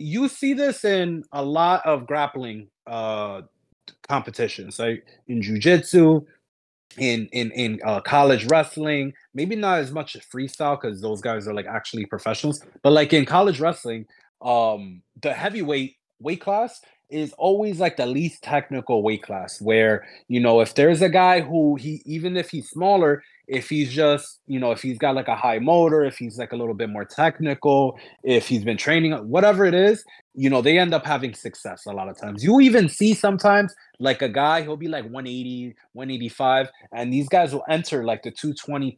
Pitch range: 125-175 Hz